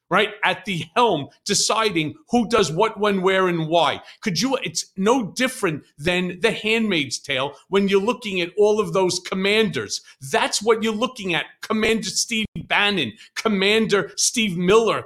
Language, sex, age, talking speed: English, male, 40-59, 160 wpm